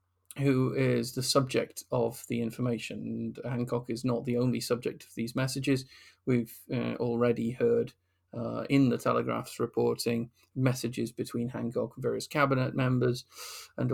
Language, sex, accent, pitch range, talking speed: English, male, British, 90-125 Hz, 140 wpm